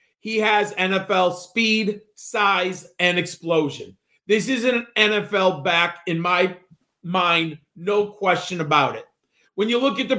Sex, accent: male, American